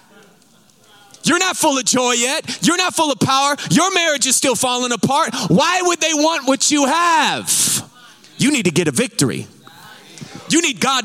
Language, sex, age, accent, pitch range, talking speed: English, male, 30-49, American, 195-270 Hz, 180 wpm